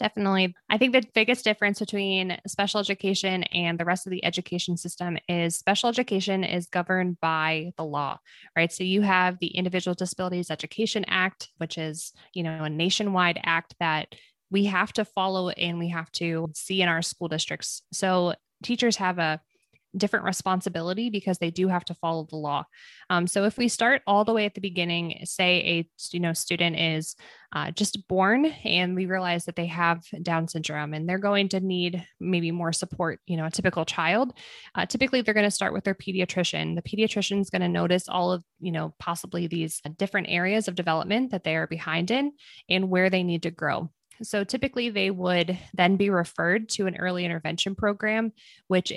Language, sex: English, female